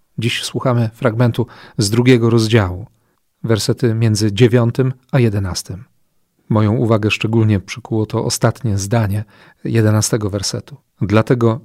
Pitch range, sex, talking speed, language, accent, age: 110-130 Hz, male, 110 wpm, Polish, native, 40-59